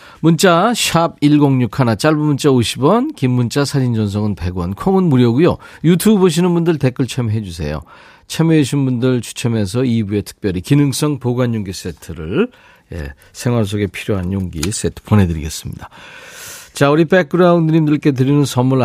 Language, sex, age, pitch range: Korean, male, 40-59, 110-160 Hz